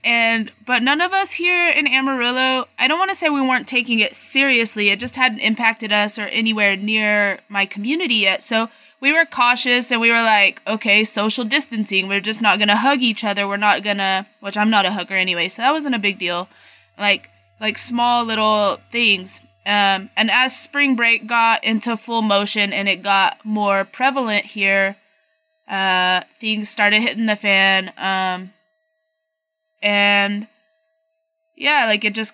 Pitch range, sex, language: 200-245 Hz, female, English